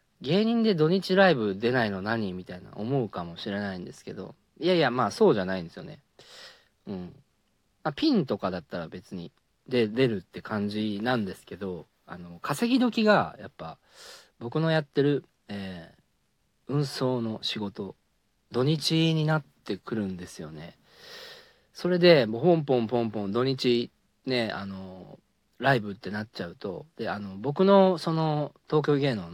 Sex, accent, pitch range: male, native, 100-155 Hz